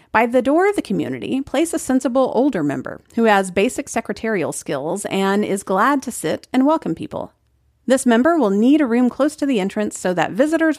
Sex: female